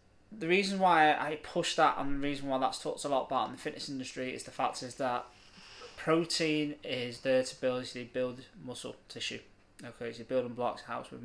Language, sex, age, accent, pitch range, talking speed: English, male, 20-39, British, 115-160 Hz, 215 wpm